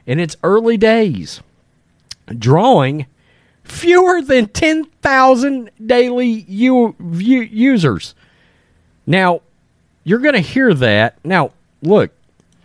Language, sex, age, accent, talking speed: English, male, 40-59, American, 85 wpm